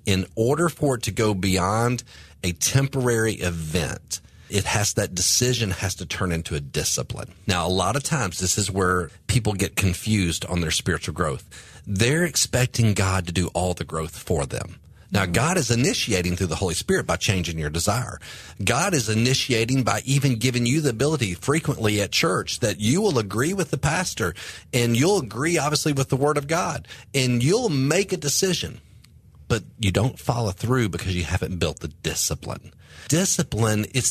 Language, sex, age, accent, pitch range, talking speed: English, male, 40-59, American, 90-130 Hz, 180 wpm